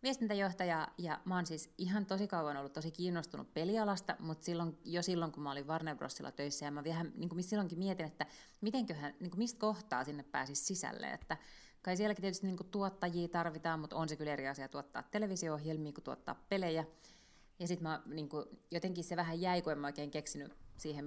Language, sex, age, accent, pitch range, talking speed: Finnish, female, 30-49, native, 150-190 Hz, 200 wpm